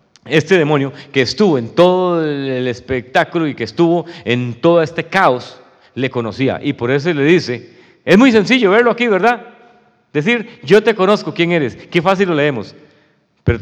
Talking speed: 170 wpm